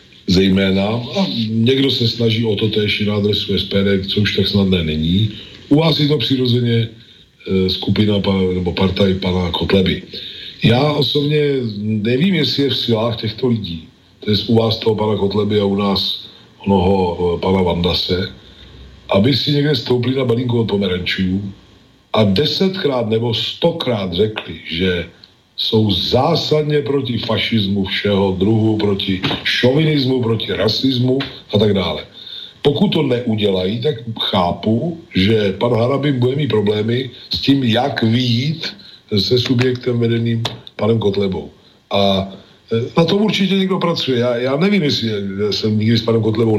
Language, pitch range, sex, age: Slovak, 100-130 Hz, male, 40-59